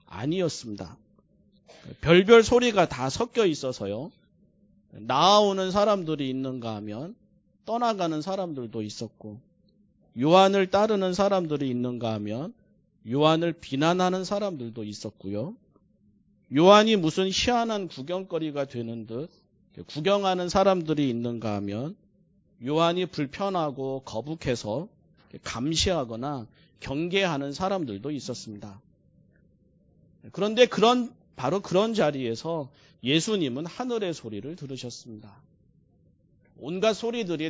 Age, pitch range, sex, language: 40-59, 120-190 Hz, male, Korean